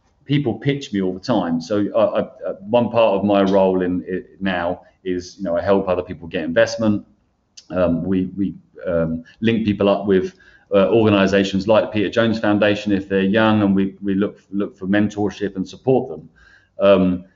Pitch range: 95-125 Hz